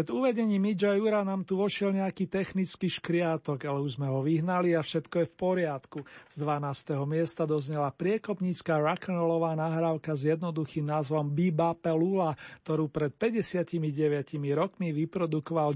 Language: Slovak